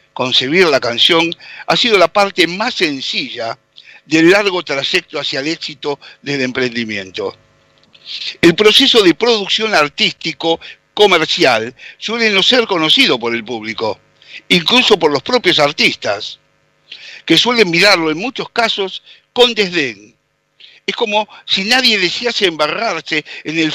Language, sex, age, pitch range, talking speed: Spanish, male, 60-79, 150-210 Hz, 130 wpm